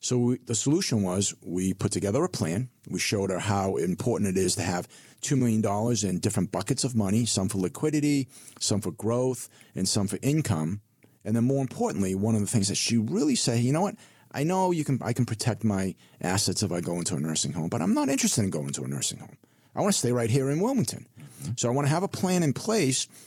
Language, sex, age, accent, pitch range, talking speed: English, male, 40-59, American, 100-130 Hz, 235 wpm